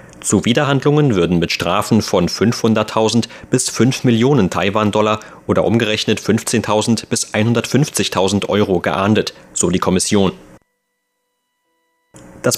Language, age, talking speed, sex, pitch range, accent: German, 30-49, 110 wpm, male, 95-120 Hz, German